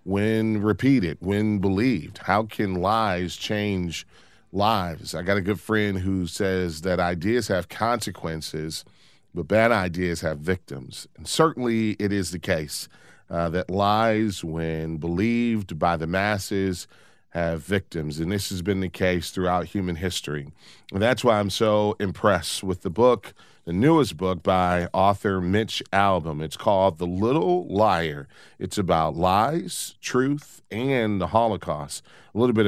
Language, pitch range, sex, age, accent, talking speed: English, 90-110 Hz, male, 40-59, American, 150 wpm